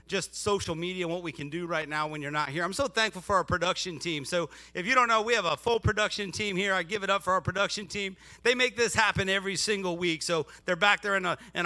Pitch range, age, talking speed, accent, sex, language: 165-210 Hz, 40-59, 280 wpm, American, male, English